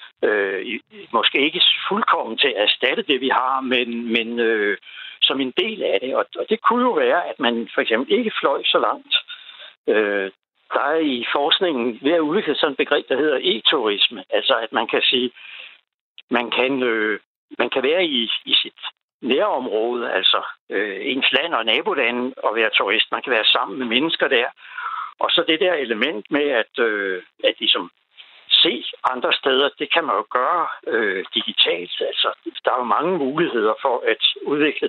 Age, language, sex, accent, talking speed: 60-79, Danish, male, native, 180 wpm